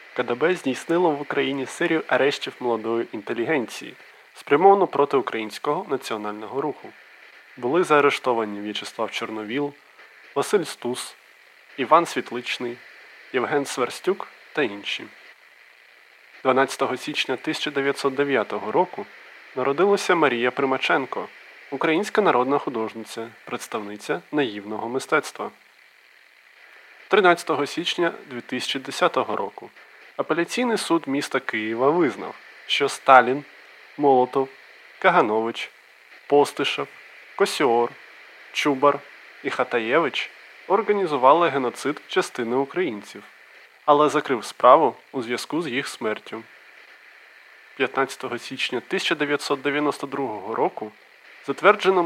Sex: male